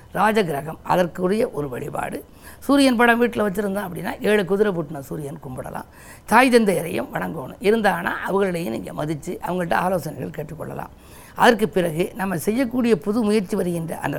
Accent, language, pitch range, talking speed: native, Tamil, 170-225 Hz, 130 wpm